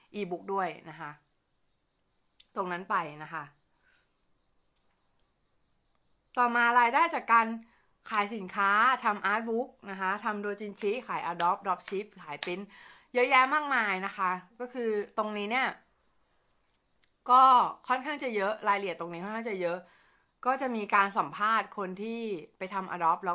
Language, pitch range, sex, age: Thai, 175-230 Hz, female, 20-39